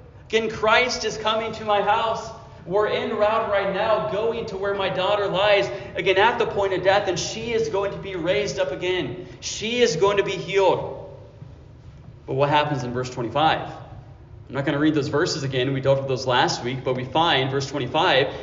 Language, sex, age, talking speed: English, male, 30-49, 210 wpm